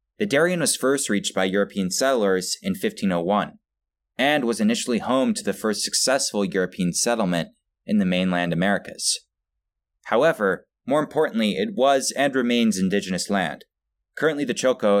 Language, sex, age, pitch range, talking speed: English, male, 20-39, 95-140 Hz, 145 wpm